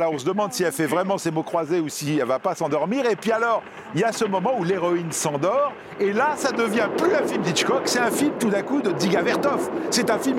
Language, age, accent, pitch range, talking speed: French, 50-69, French, 180-255 Hz, 285 wpm